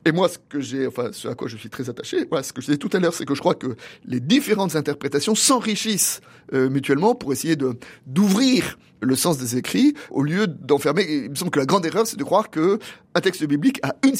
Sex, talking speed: male, 250 wpm